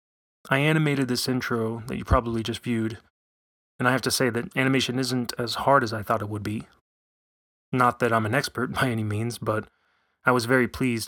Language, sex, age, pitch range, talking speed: English, male, 30-49, 110-125 Hz, 205 wpm